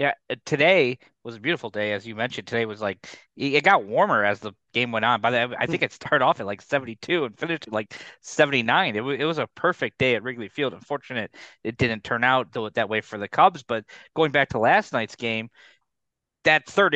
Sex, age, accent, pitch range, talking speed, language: male, 20-39, American, 120-165 Hz, 225 wpm, English